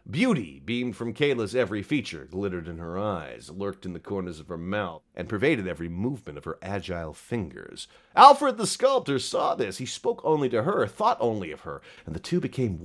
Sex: male